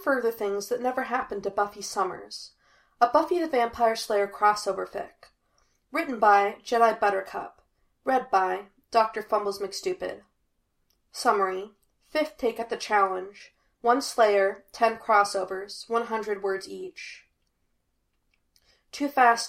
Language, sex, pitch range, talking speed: English, female, 195-235 Hz, 125 wpm